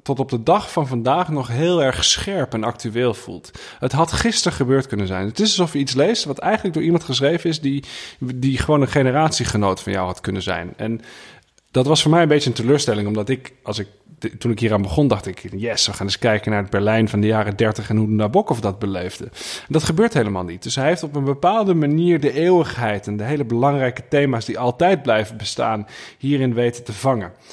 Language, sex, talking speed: Dutch, male, 230 wpm